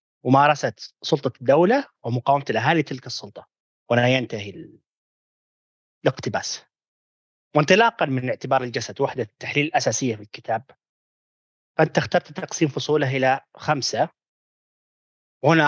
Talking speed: 105 wpm